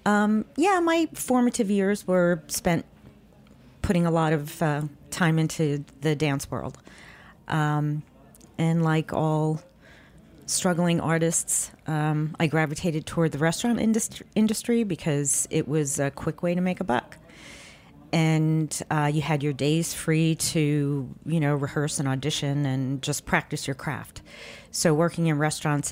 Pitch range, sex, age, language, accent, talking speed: 145-175 Hz, female, 40-59, English, American, 145 wpm